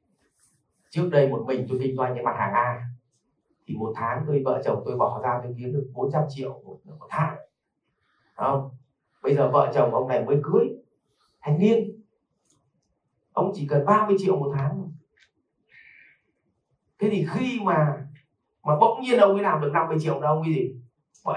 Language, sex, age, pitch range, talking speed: Vietnamese, male, 30-49, 135-175 Hz, 175 wpm